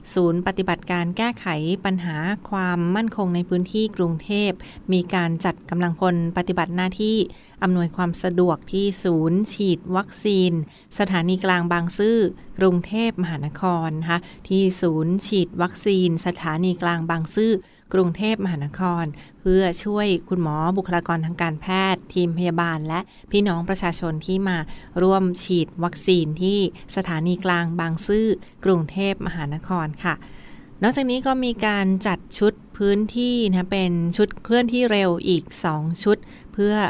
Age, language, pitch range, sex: 20-39, Thai, 170-195 Hz, female